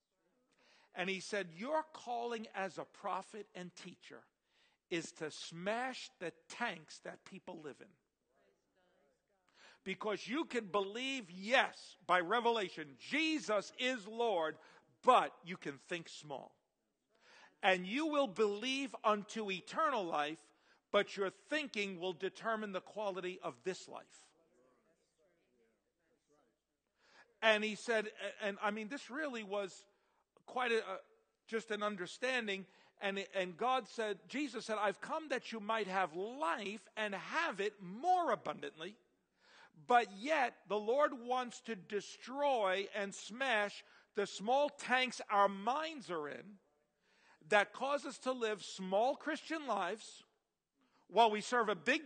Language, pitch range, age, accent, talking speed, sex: English, 195-255 Hz, 50-69, American, 130 wpm, male